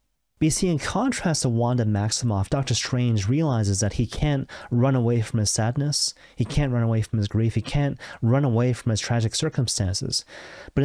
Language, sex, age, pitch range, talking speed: English, male, 30-49, 115-145 Hz, 195 wpm